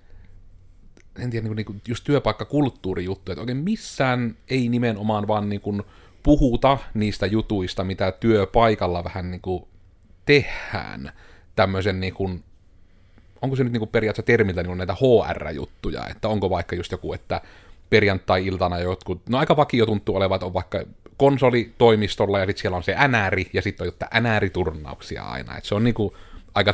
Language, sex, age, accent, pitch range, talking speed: Finnish, male, 30-49, native, 90-110 Hz, 160 wpm